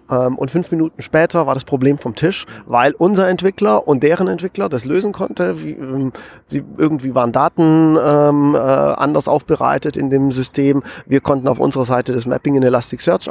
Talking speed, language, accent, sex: 160 wpm, German, German, male